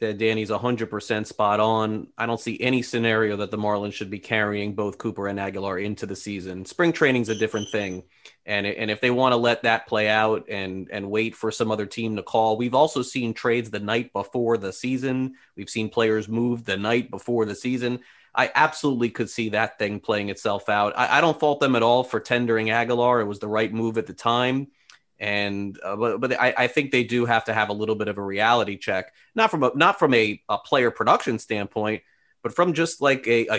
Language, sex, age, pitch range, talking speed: English, male, 30-49, 105-140 Hz, 225 wpm